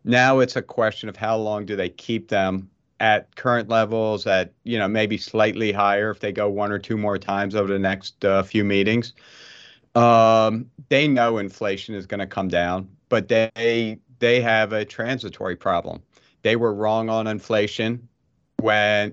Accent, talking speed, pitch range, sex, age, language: American, 175 wpm, 105-120 Hz, male, 40-59, English